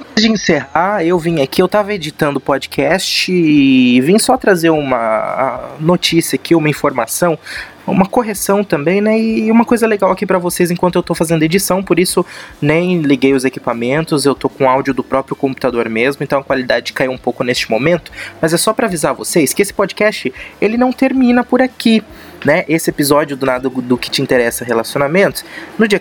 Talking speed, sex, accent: 200 wpm, male, Brazilian